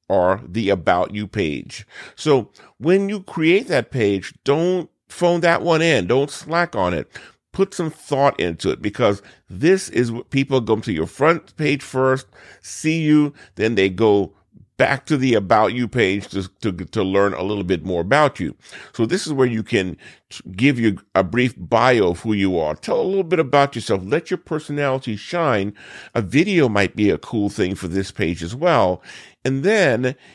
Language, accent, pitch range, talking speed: English, American, 95-140 Hz, 190 wpm